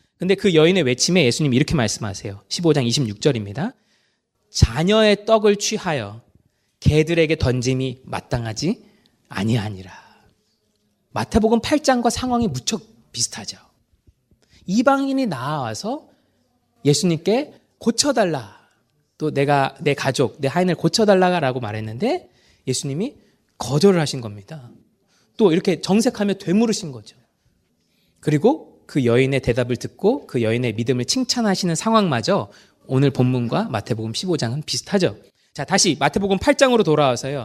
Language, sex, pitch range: Korean, male, 125-210 Hz